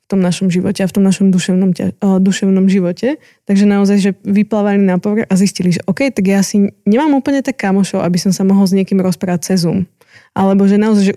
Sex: female